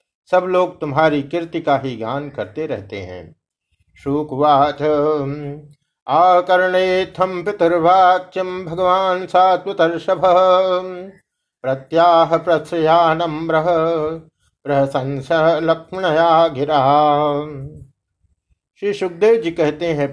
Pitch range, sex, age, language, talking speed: 140-180 Hz, male, 50-69, Hindi, 70 wpm